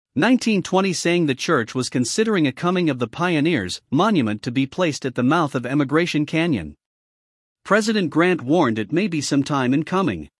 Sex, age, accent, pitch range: male, 50-69, American, 130-185 Hz